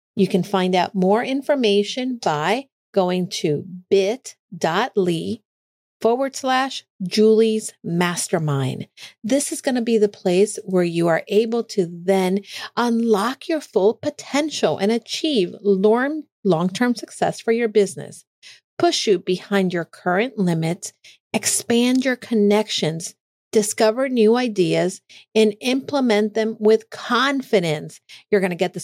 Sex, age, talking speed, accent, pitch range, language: female, 50-69, 125 wpm, American, 185-240 Hz, English